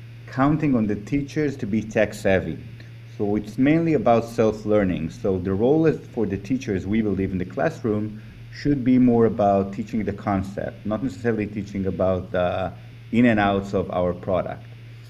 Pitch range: 100-120 Hz